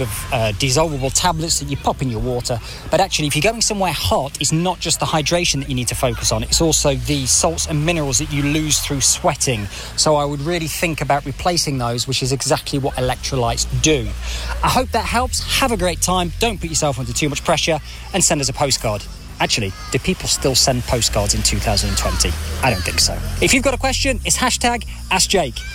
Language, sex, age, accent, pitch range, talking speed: English, male, 20-39, British, 130-180 Hz, 220 wpm